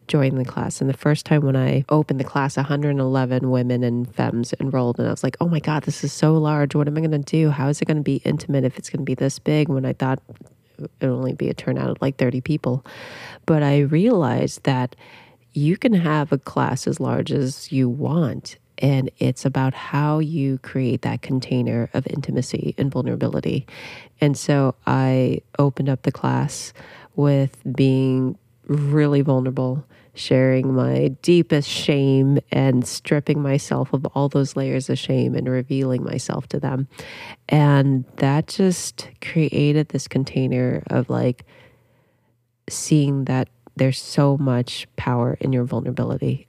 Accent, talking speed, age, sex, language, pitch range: American, 170 wpm, 30-49, female, English, 125-145 Hz